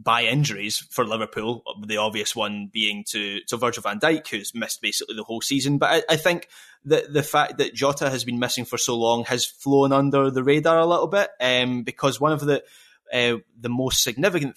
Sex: male